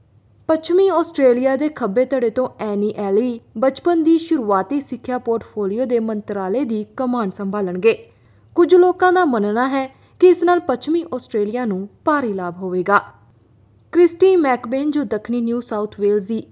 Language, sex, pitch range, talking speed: Punjabi, female, 205-275 Hz, 145 wpm